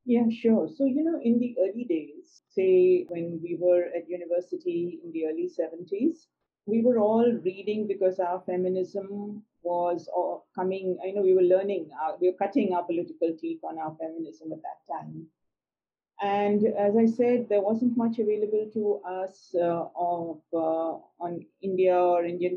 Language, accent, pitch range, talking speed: English, Indian, 175-215 Hz, 170 wpm